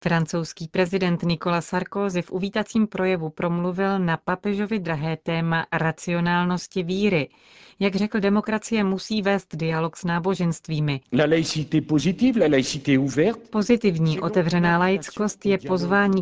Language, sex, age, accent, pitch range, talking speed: Czech, female, 40-59, native, 160-190 Hz, 100 wpm